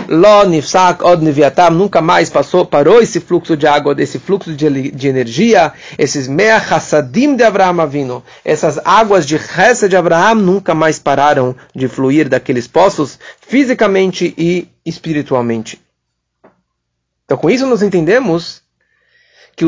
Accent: Brazilian